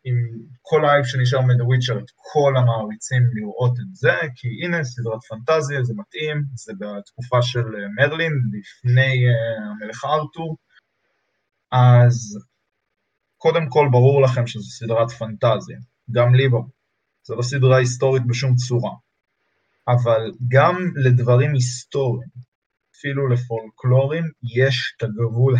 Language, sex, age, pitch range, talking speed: Hebrew, male, 20-39, 115-130 Hz, 115 wpm